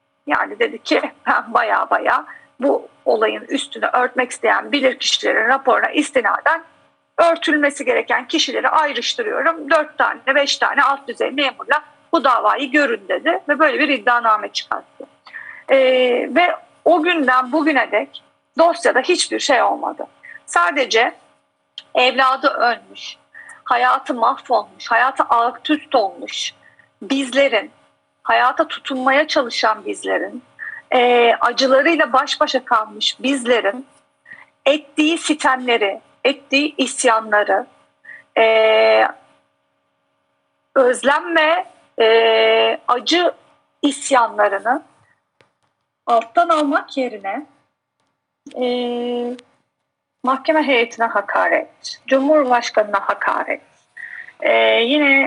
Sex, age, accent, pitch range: female, 50-69, native, 235-305 Hz